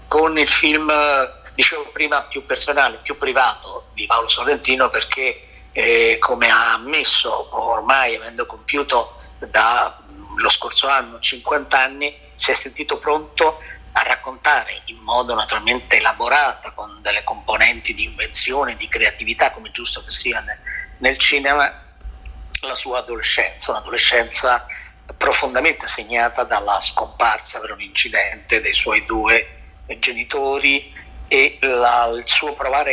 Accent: native